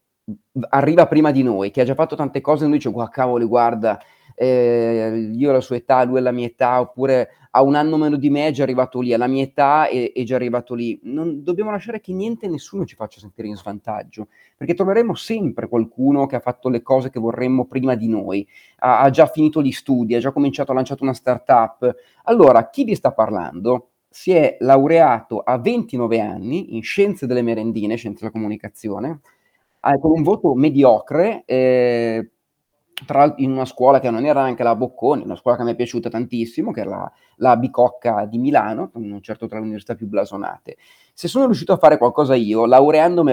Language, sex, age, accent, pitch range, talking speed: Italian, male, 30-49, native, 115-150 Hz, 210 wpm